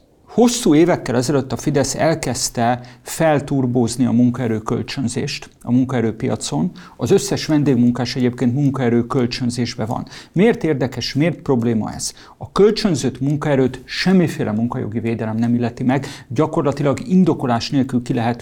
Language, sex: English, male